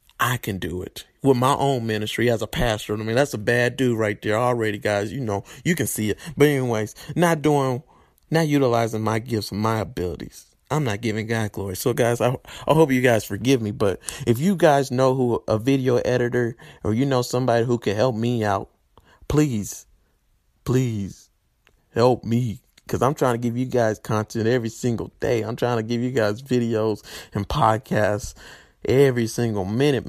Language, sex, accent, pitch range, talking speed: English, male, American, 105-125 Hz, 195 wpm